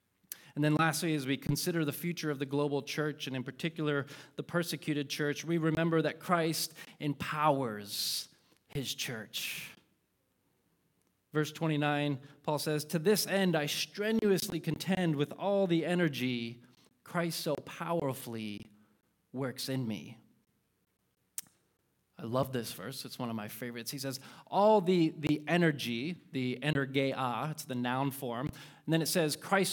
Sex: male